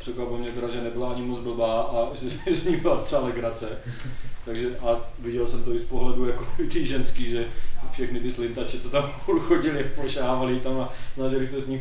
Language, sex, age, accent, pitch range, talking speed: Czech, male, 20-39, native, 120-135 Hz, 200 wpm